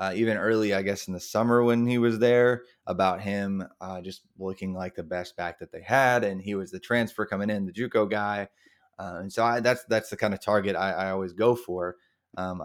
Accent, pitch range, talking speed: American, 95-120 Hz, 235 wpm